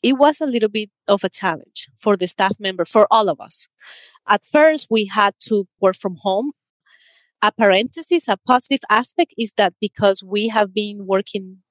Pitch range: 190-235 Hz